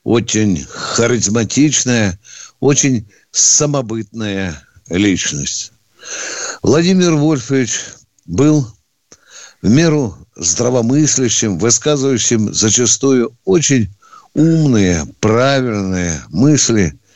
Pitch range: 95-135 Hz